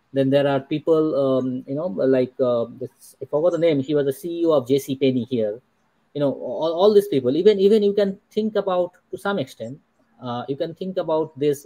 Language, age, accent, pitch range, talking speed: English, 20-39, Indian, 135-180 Hz, 220 wpm